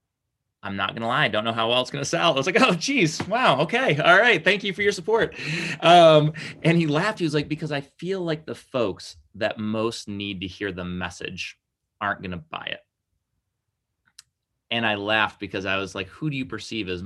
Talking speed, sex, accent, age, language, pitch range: 220 wpm, male, American, 30-49, English, 95-120 Hz